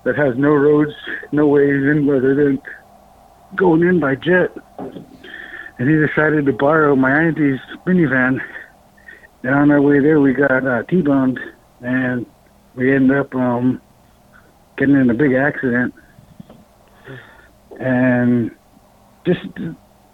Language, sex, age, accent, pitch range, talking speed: English, male, 60-79, American, 140-175 Hz, 125 wpm